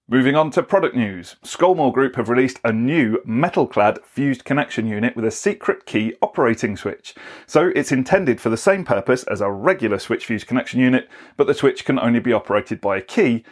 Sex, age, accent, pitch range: male, 30-49, British, 120-150 Hz